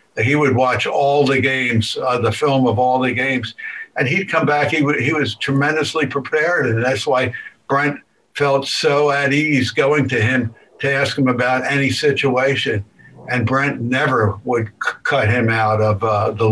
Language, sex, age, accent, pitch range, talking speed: English, male, 60-79, American, 115-140 Hz, 180 wpm